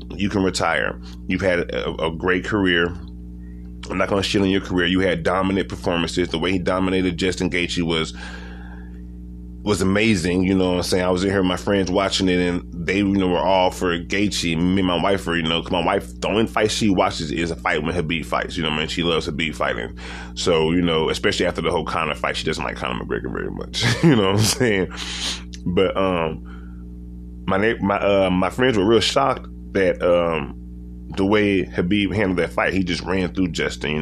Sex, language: male, English